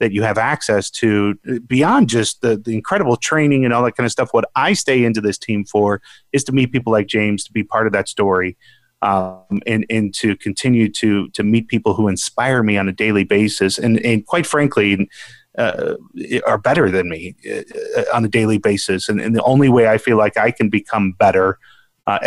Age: 30-49